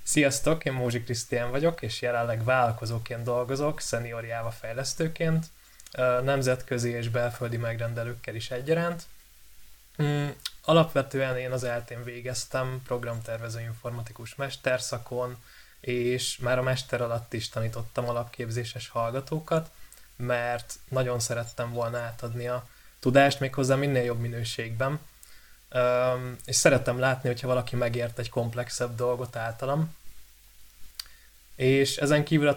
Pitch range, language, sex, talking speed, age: 115-135 Hz, Hungarian, male, 110 wpm, 20-39